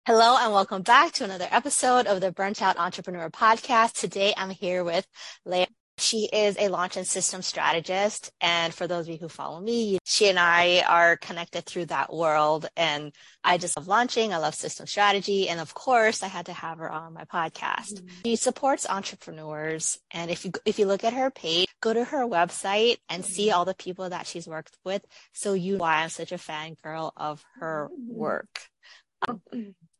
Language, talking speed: English, 195 wpm